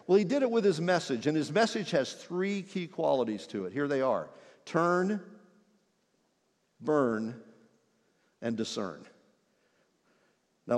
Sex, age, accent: male, 50-69, American